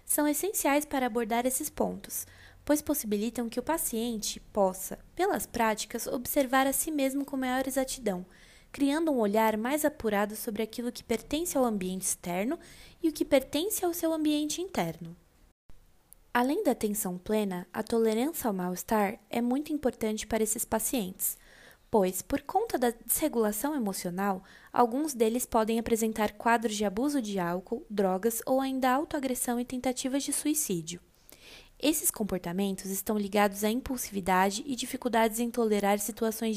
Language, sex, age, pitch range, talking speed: English, female, 20-39, 215-275 Hz, 145 wpm